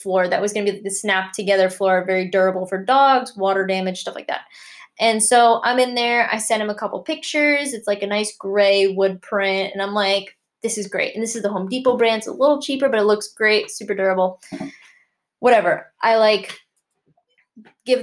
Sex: female